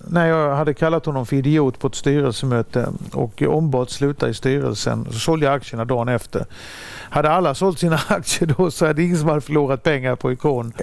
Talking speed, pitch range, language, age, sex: 200 wpm, 130-170 Hz, Swedish, 50-69, male